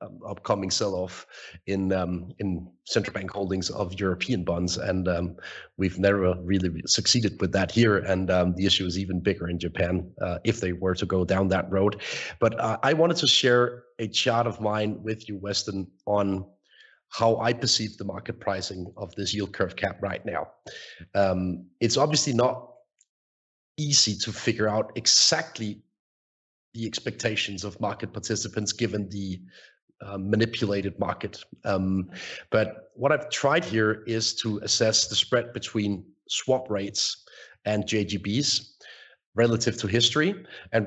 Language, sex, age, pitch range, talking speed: English, male, 30-49, 95-115 Hz, 155 wpm